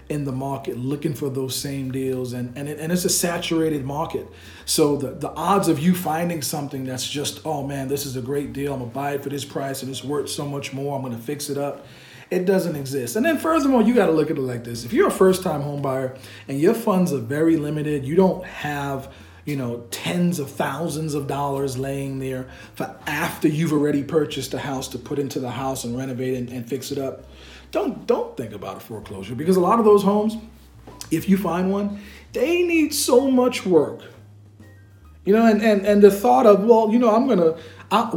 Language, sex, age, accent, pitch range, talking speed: English, male, 40-59, American, 130-190 Hz, 230 wpm